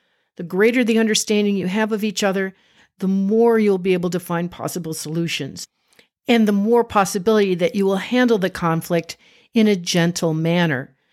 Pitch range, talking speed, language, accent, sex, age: 185-240 Hz, 175 wpm, English, American, female, 50-69